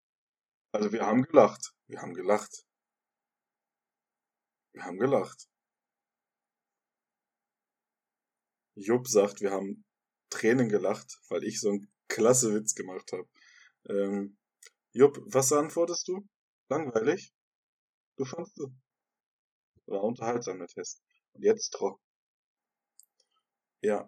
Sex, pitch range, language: male, 105-150 Hz, German